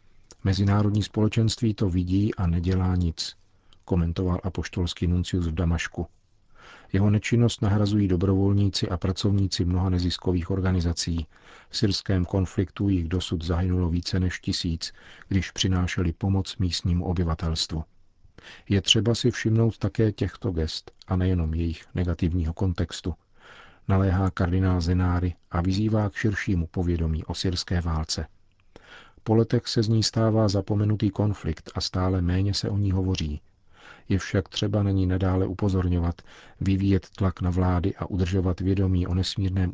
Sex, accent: male, native